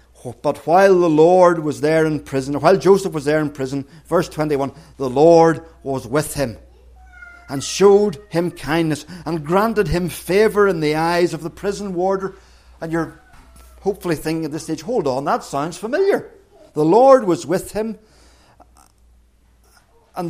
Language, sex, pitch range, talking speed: English, male, 140-185 Hz, 160 wpm